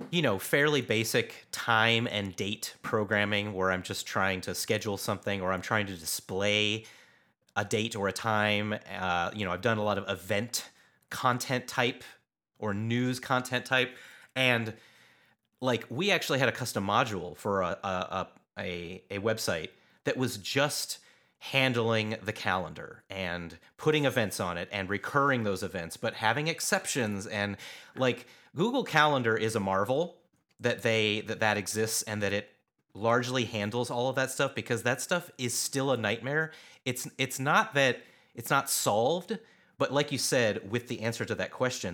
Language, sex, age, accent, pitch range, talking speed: English, male, 30-49, American, 100-125 Hz, 165 wpm